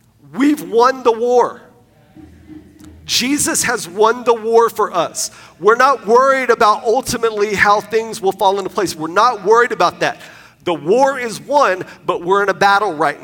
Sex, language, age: male, English, 40-59